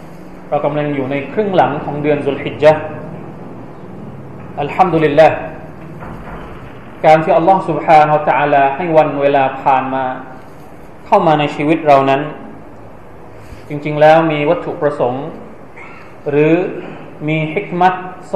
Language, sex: Thai, male